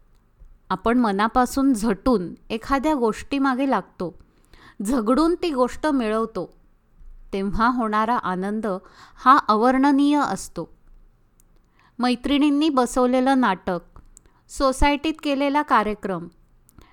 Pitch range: 230-305 Hz